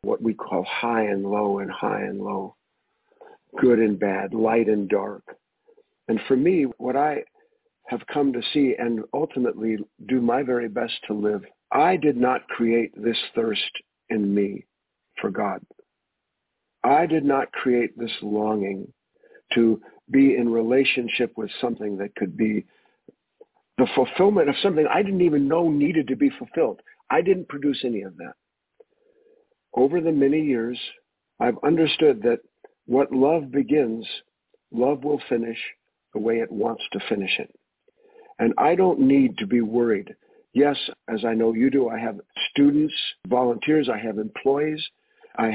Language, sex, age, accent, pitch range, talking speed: English, male, 50-69, American, 115-155 Hz, 155 wpm